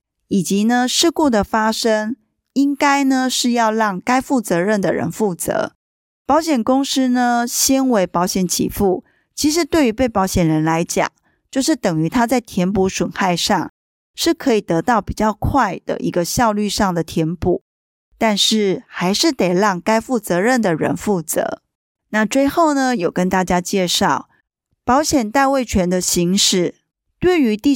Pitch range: 180-260 Hz